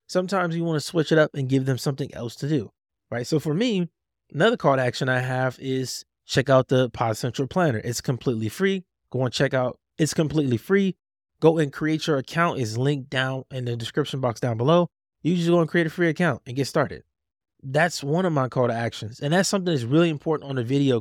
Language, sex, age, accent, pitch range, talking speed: English, male, 20-39, American, 130-170 Hz, 230 wpm